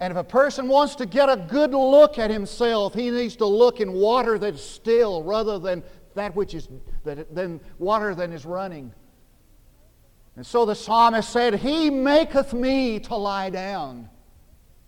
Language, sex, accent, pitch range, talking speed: English, male, American, 185-235 Hz, 165 wpm